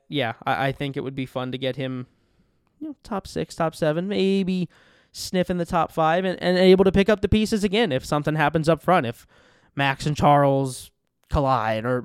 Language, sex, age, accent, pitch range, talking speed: English, male, 20-39, American, 140-180 Hz, 205 wpm